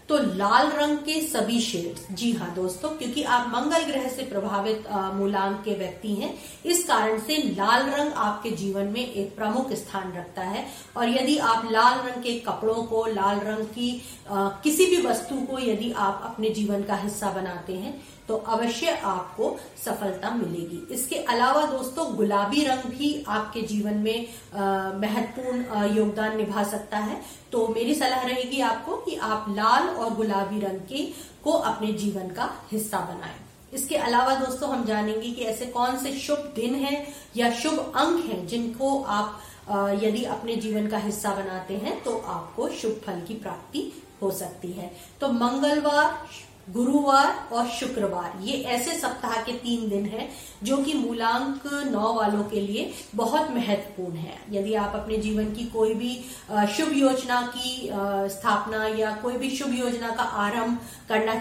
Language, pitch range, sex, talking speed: Hindi, 205-260 Hz, female, 165 wpm